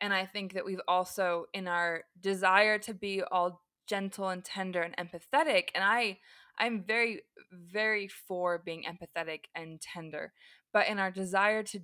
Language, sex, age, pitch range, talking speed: English, female, 20-39, 180-220 Hz, 160 wpm